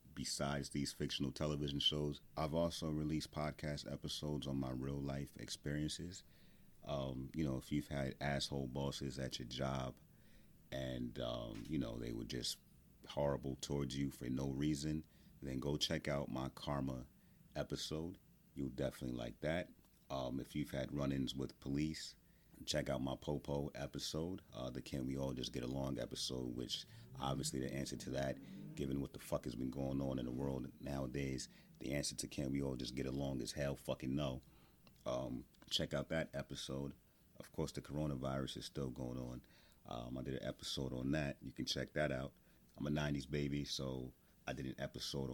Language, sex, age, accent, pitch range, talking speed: English, male, 30-49, American, 65-70 Hz, 180 wpm